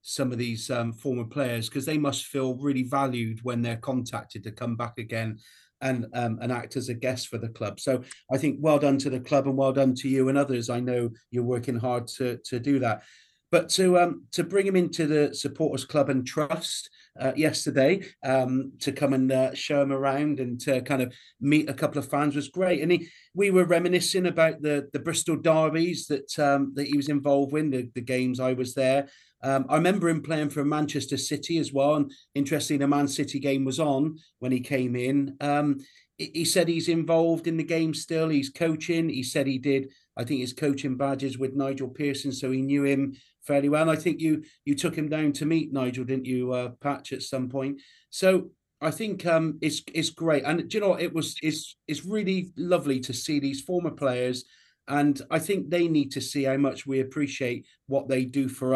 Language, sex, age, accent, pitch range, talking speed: English, male, 40-59, British, 130-155 Hz, 220 wpm